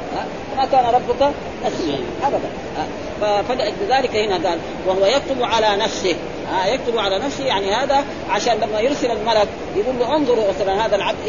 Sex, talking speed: female, 145 wpm